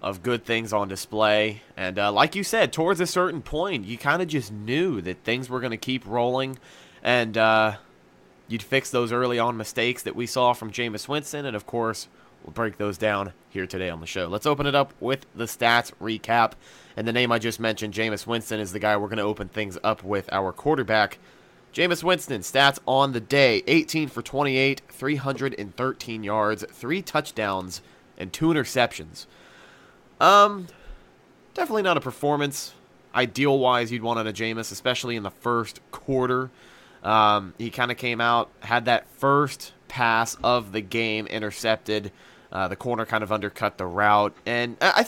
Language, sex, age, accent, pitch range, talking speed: English, male, 30-49, American, 105-135 Hz, 180 wpm